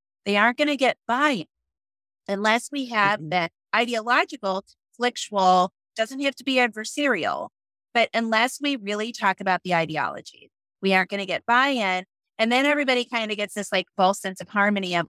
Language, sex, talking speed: English, female, 180 wpm